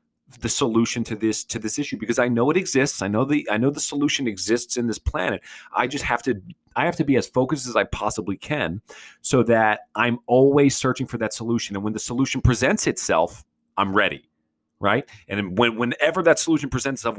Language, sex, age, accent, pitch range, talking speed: English, male, 30-49, American, 110-135 Hz, 215 wpm